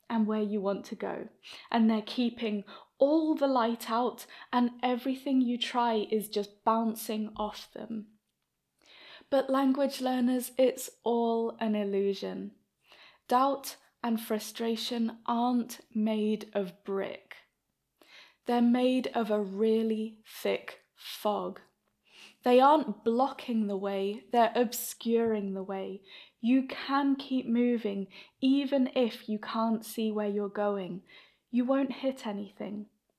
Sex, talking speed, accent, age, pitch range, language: female, 125 wpm, British, 10-29, 210-255 Hz, English